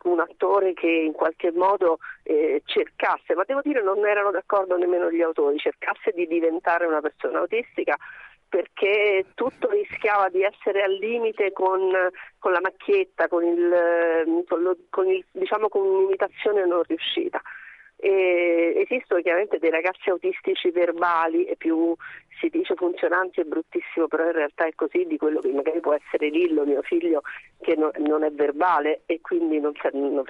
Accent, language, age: native, Italian, 40-59